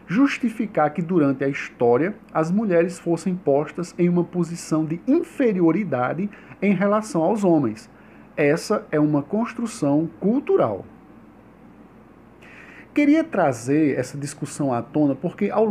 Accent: Brazilian